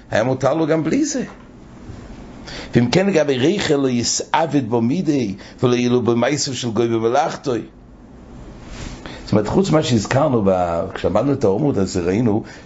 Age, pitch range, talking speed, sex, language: 60-79, 105-155 Hz, 130 wpm, male, English